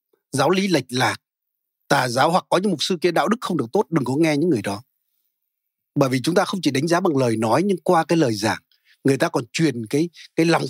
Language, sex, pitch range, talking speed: Vietnamese, male, 130-180 Hz, 260 wpm